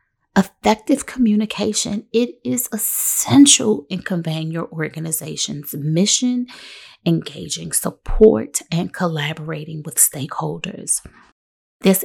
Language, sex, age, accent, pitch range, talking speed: English, female, 30-49, American, 165-230 Hz, 85 wpm